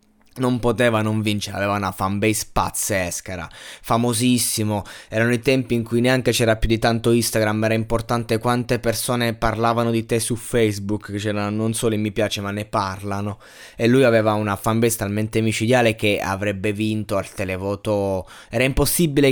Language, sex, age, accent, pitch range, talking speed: Italian, male, 20-39, native, 110-130 Hz, 165 wpm